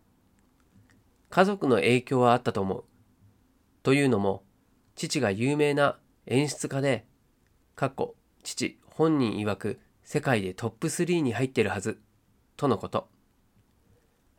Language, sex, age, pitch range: Japanese, male, 40-59, 110-150 Hz